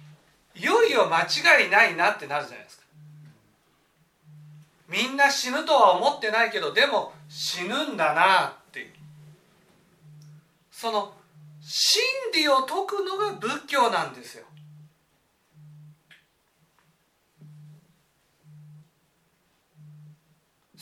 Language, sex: Japanese, male